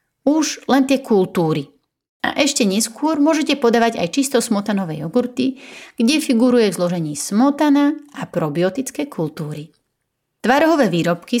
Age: 30-49